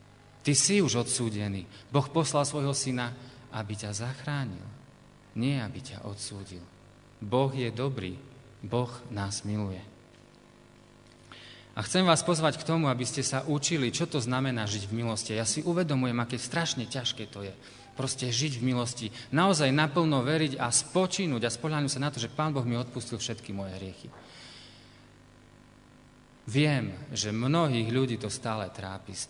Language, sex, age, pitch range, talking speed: Slovak, male, 30-49, 110-135 Hz, 150 wpm